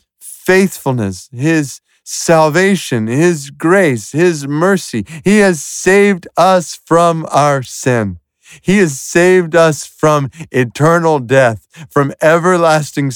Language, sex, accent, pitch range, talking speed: English, male, American, 120-165 Hz, 105 wpm